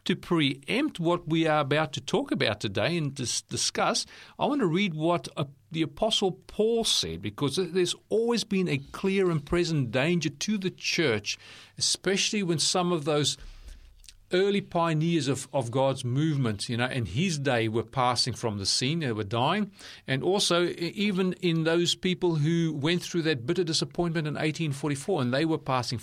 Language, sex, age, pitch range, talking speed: English, male, 40-59, 130-180 Hz, 180 wpm